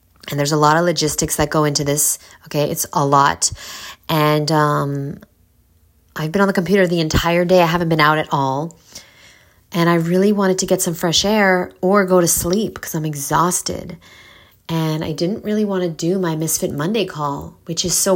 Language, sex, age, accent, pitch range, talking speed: English, female, 30-49, American, 140-170 Hz, 200 wpm